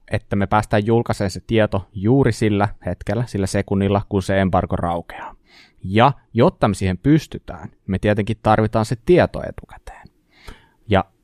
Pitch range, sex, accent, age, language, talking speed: 95-115 Hz, male, native, 20-39, Finnish, 145 wpm